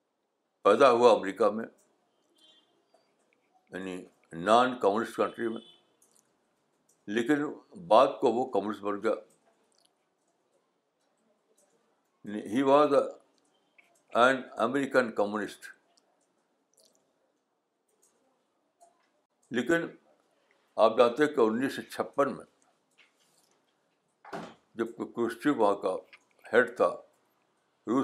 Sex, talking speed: male, 65 wpm